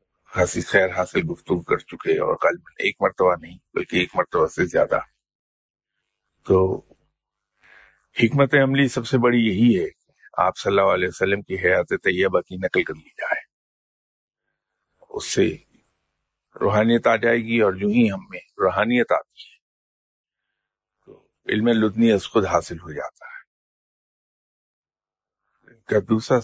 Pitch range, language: 100-130 Hz, English